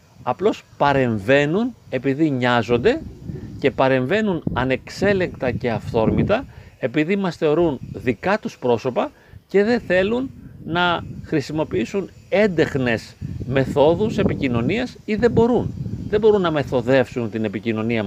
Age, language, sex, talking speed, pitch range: 40-59, Greek, male, 105 wpm, 120-180 Hz